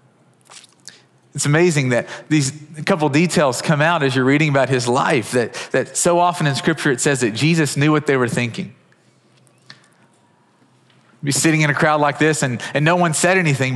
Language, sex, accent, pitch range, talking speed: English, male, American, 140-175 Hz, 185 wpm